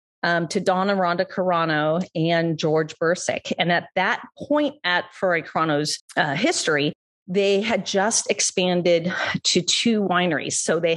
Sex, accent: female, American